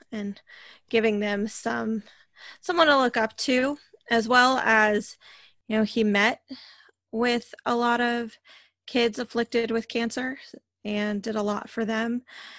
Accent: American